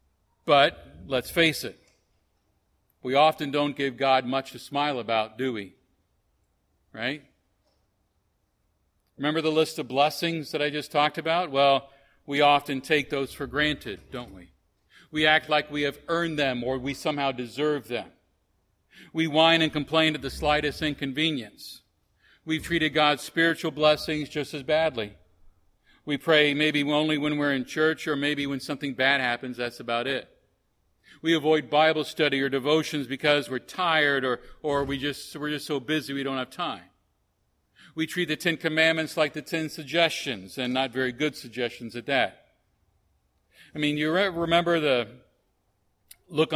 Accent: American